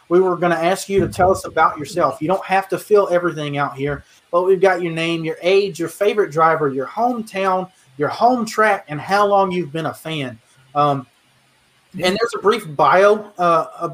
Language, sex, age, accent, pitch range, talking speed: English, male, 30-49, American, 150-185 Hz, 210 wpm